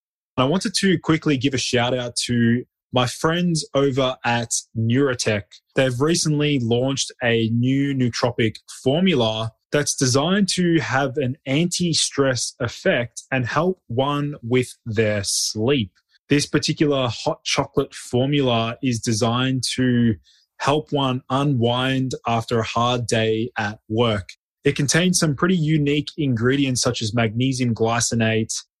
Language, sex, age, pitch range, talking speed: English, male, 20-39, 115-140 Hz, 125 wpm